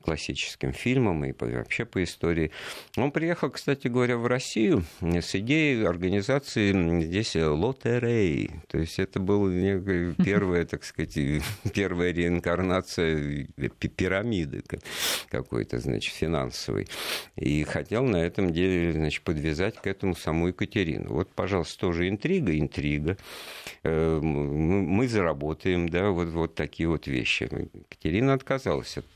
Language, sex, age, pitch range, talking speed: Russian, male, 50-69, 80-115 Hz, 115 wpm